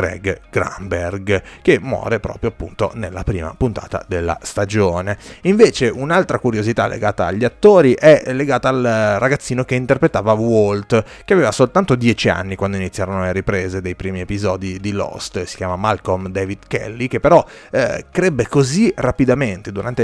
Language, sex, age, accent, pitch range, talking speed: Italian, male, 30-49, native, 95-125 Hz, 150 wpm